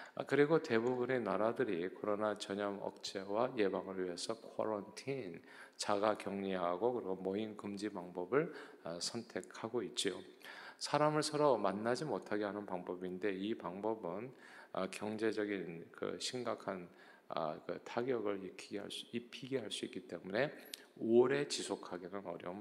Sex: male